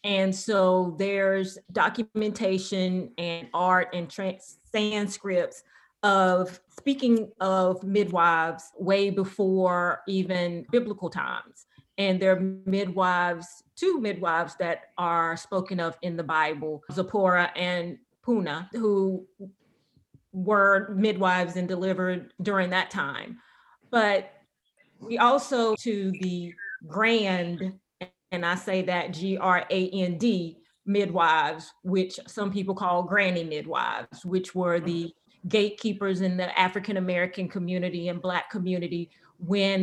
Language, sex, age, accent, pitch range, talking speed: English, female, 30-49, American, 180-200 Hz, 105 wpm